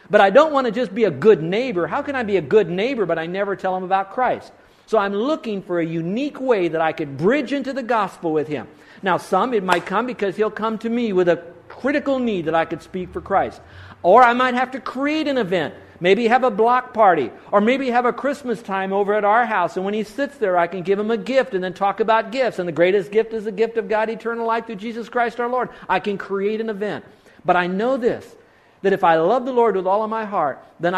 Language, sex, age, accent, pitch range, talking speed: English, male, 50-69, American, 175-235 Hz, 265 wpm